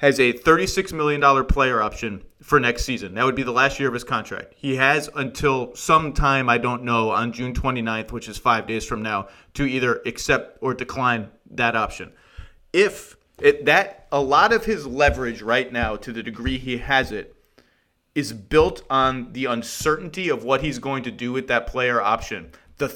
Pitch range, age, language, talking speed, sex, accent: 120-140 Hz, 30-49, English, 190 wpm, male, American